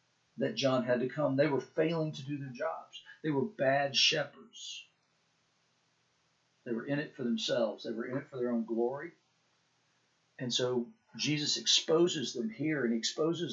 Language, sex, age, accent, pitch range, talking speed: English, male, 50-69, American, 115-150 Hz, 170 wpm